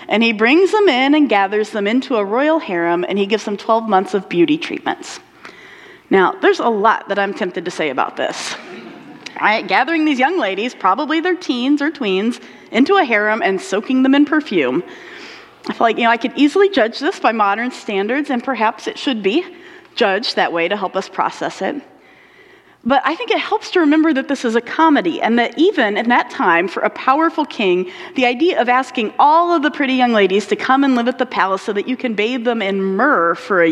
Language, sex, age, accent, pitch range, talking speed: English, female, 30-49, American, 200-300 Hz, 220 wpm